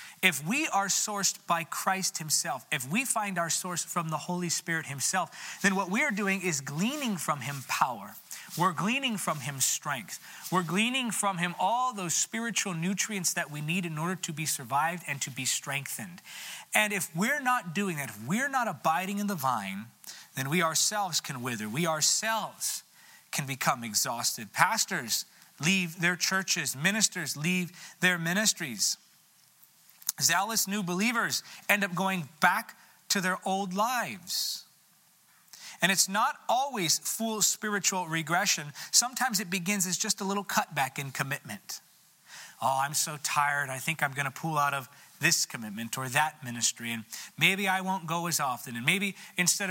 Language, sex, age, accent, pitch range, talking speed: English, male, 30-49, American, 150-195 Hz, 165 wpm